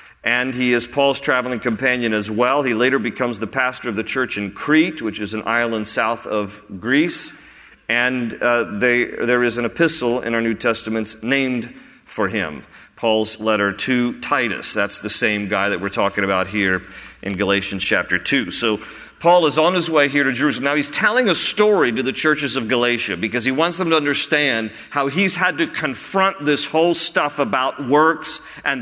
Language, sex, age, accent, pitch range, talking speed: English, male, 40-59, American, 120-165 Hz, 190 wpm